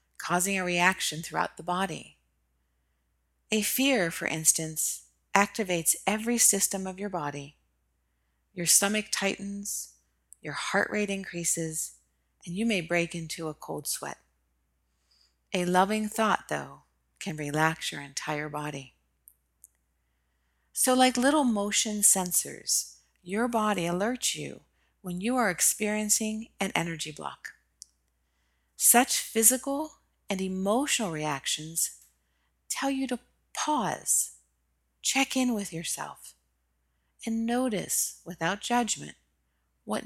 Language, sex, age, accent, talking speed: English, female, 40-59, American, 110 wpm